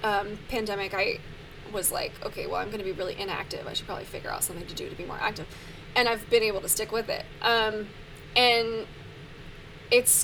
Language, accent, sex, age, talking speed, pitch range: English, American, female, 20-39, 210 wpm, 210-240 Hz